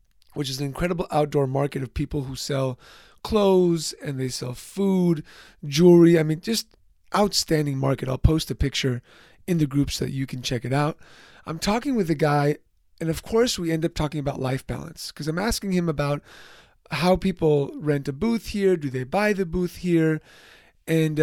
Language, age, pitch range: English, 30-49, 140-175 Hz